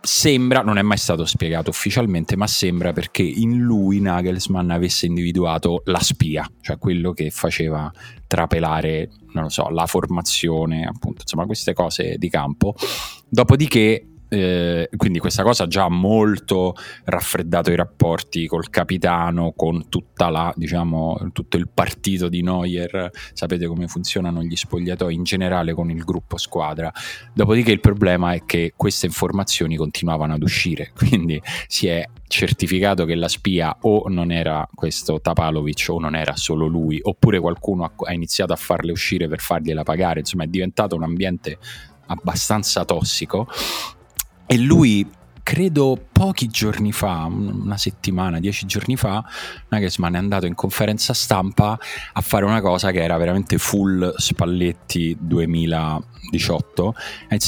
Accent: native